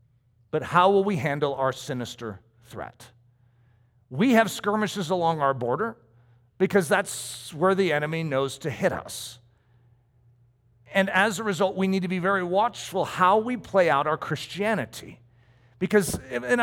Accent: American